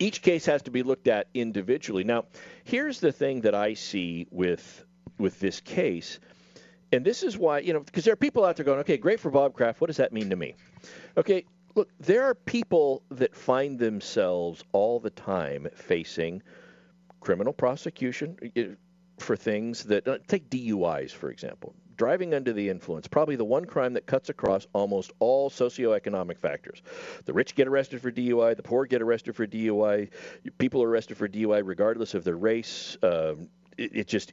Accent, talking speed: American, 180 wpm